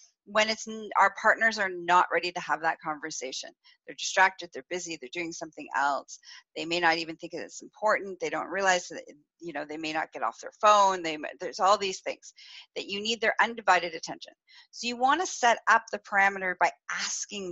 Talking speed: 200 wpm